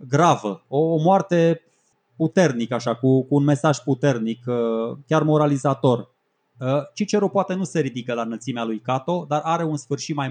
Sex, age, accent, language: male, 20-39, native, Romanian